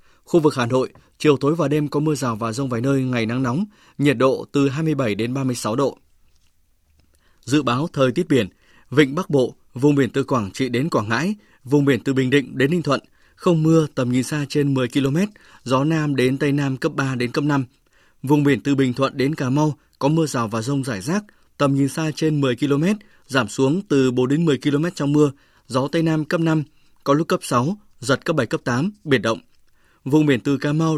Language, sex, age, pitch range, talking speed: Vietnamese, male, 20-39, 130-155 Hz, 230 wpm